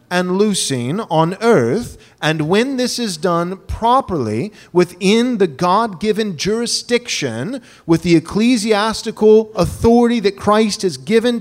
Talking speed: 115 wpm